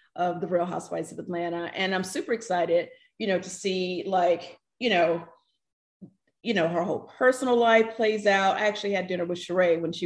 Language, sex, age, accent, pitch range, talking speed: English, female, 30-49, American, 195-280 Hz, 195 wpm